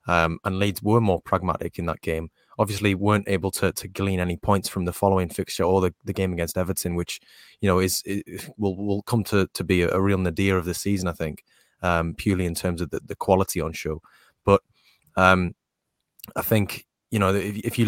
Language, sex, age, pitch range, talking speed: English, male, 20-39, 90-105 Hz, 220 wpm